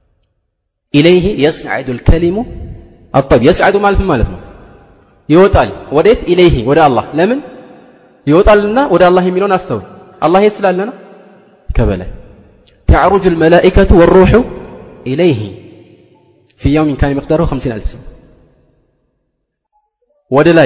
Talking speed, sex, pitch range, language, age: 95 wpm, male, 125-190 Hz, Amharic, 30-49